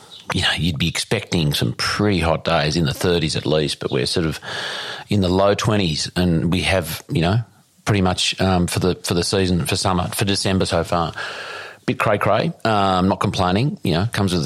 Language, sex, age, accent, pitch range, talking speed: English, male, 40-59, Australian, 80-100 Hz, 210 wpm